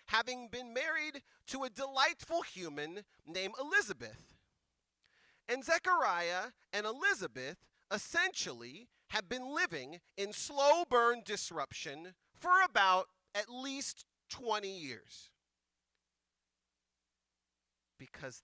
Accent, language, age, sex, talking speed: American, English, 40-59, male, 90 wpm